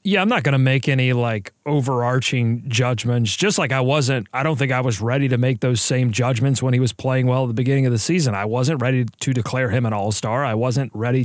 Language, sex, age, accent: English, male, 30-49, American